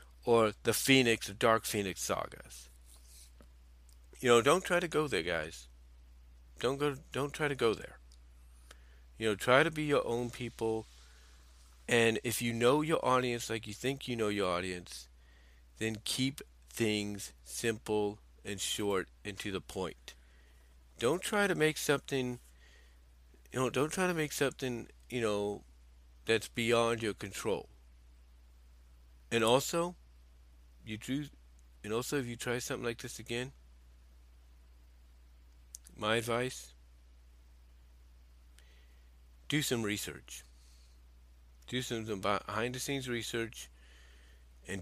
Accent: American